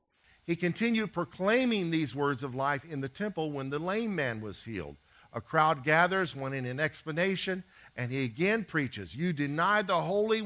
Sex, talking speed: male, 170 wpm